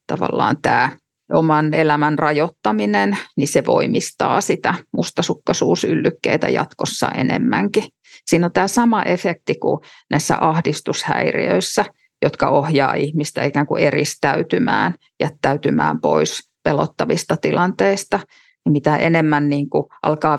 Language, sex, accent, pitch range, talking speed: Finnish, female, native, 150-185 Hz, 100 wpm